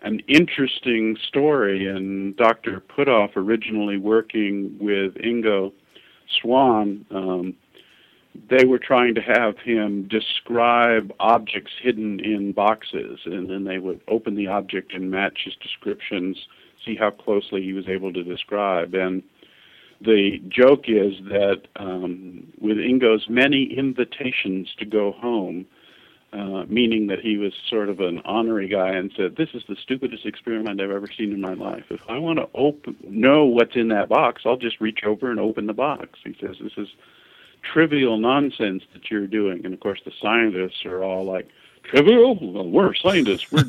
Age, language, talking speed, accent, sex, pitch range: 50-69, English, 160 wpm, American, male, 100-130 Hz